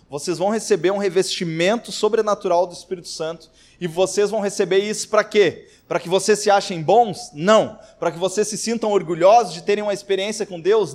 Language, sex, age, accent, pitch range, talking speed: Portuguese, male, 20-39, Brazilian, 170-210 Hz, 190 wpm